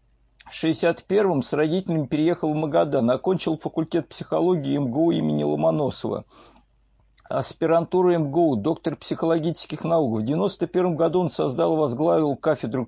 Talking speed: 115 wpm